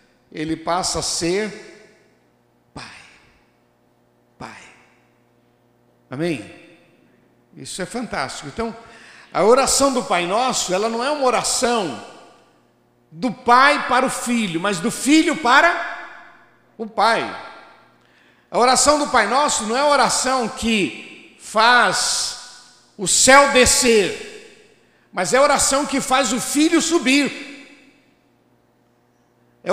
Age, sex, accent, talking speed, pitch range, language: 60-79, male, Brazilian, 110 wpm, 190-285 Hz, Portuguese